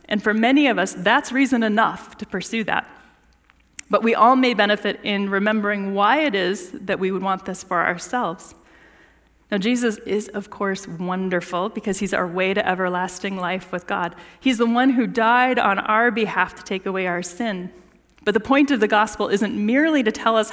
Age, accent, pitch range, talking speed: 30-49, American, 185-255 Hz, 195 wpm